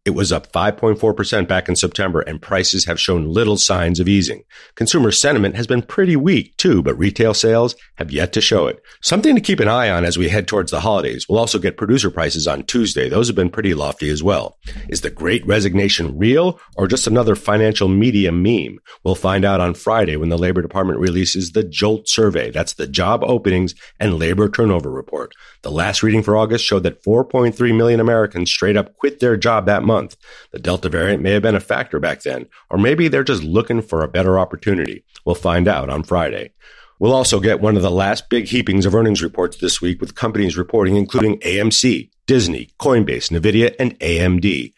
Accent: American